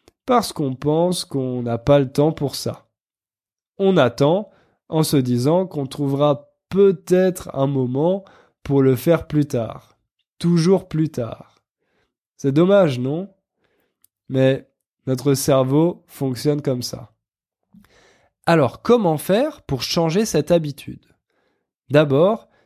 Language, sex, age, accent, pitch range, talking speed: French, male, 20-39, French, 130-185 Hz, 120 wpm